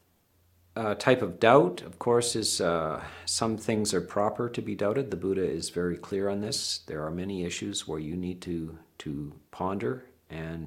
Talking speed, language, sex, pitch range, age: 185 wpm, English, male, 85-110 Hz, 50-69